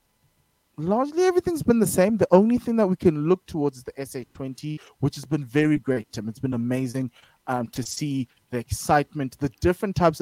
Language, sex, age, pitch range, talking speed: English, male, 20-39, 120-145 Hz, 195 wpm